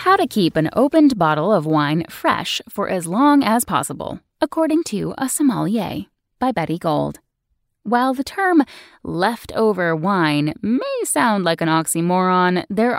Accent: American